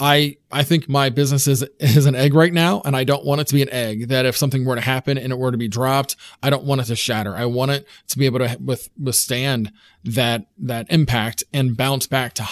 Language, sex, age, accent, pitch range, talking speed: English, male, 30-49, American, 125-150 Hz, 260 wpm